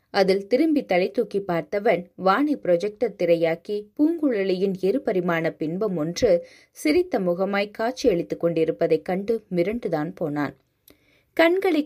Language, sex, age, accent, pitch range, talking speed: Tamil, female, 20-39, native, 175-245 Hz, 100 wpm